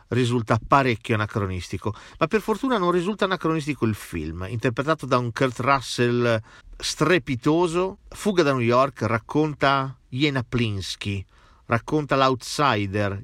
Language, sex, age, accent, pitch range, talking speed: Italian, male, 40-59, native, 105-140 Hz, 120 wpm